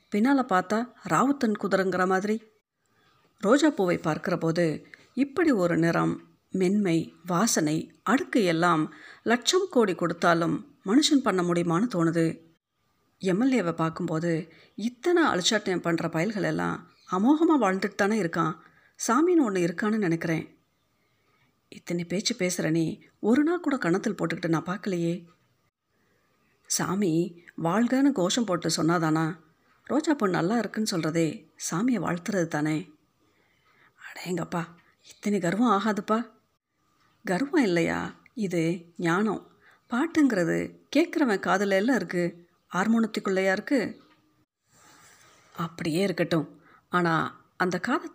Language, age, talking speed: Tamil, 50-69, 100 wpm